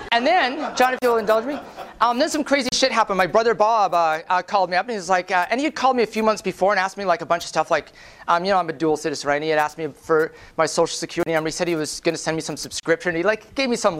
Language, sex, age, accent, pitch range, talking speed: English, male, 30-49, American, 165-225 Hz, 335 wpm